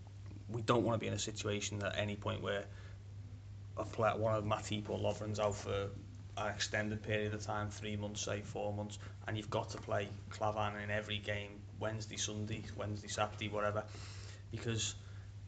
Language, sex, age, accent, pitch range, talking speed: English, male, 30-49, British, 100-110 Hz, 185 wpm